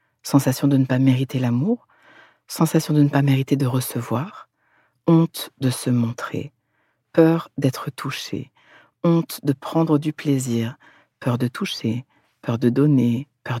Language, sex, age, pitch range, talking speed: French, female, 50-69, 125-150 Hz, 140 wpm